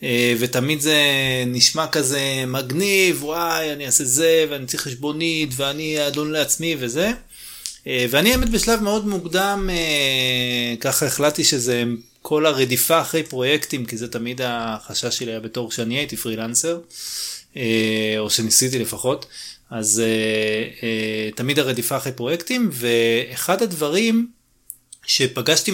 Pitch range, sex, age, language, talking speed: 115-155 Hz, male, 30-49, Hebrew, 125 wpm